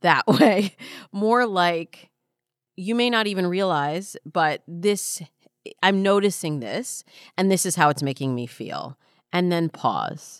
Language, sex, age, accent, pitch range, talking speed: English, female, 30-49, American, 145-195 Hz, 145 wpm